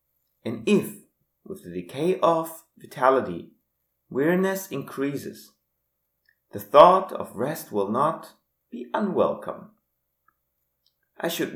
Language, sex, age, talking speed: English, male, 30-49, 100 wpm